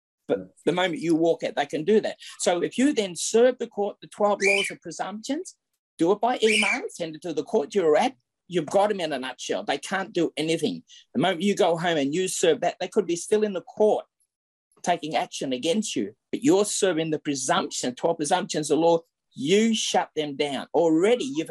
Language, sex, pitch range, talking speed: English, male, 155-220 Hz, 220 wpm